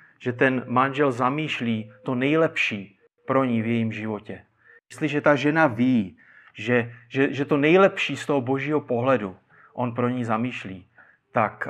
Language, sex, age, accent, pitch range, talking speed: Czech, male, 30-49, native, 125-165 Hz, 150 wpm